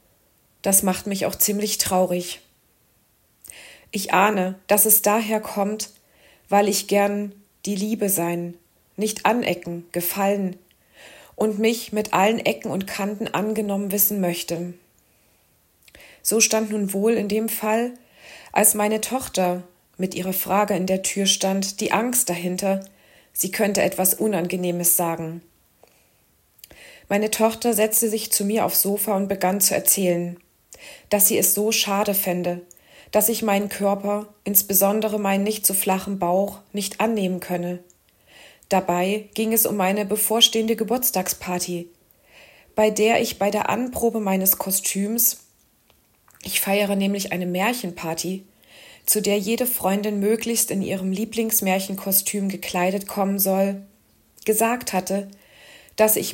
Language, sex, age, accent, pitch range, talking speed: German, female, 40-59, German, 185-215 Hz, 130 wpm